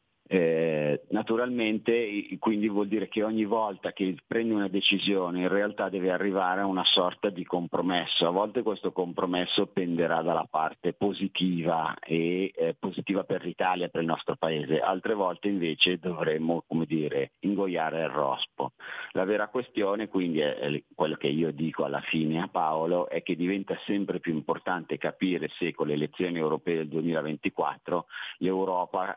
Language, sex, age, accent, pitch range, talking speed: Italian, male, 50-69, native, 85-100 Hz, 145 wpm